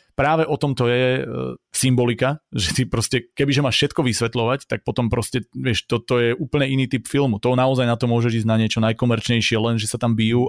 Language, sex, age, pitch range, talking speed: Slovak, male, 30-49, 115-130 Hz, 215 wpm